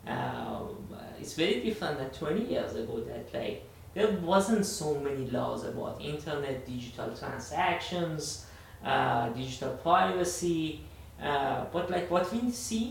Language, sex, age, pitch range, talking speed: English, male, 30-49, 110-155 Hz, 130 wpm